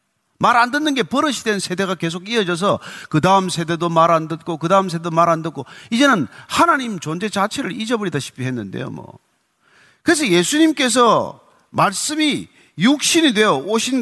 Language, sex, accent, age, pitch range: Korean, male, native, 40-59, 195-280 Hz